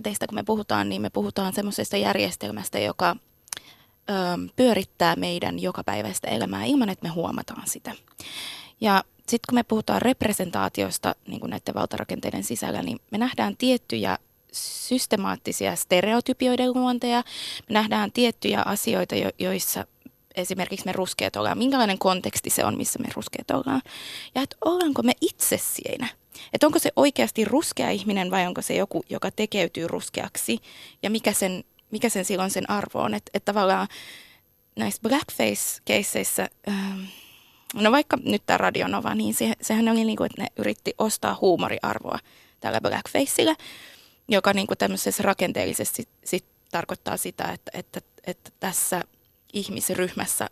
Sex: female